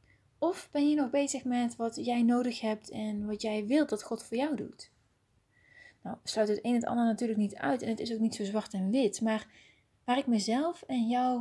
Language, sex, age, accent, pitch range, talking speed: Dutch, female, 30-49, Dutch, 205-255 Hz, 230 wpm